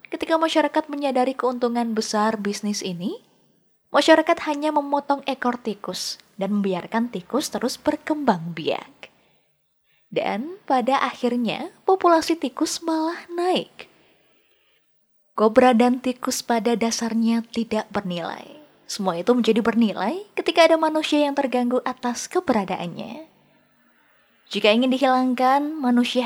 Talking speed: 105 wpm